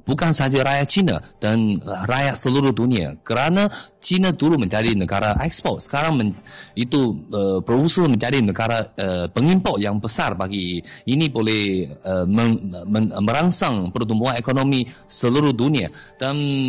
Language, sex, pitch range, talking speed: Malay, male, 110-150 Hz, 135 wpm